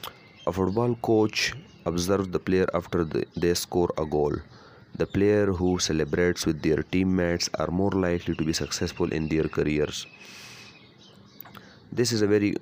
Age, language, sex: 30-49, English, male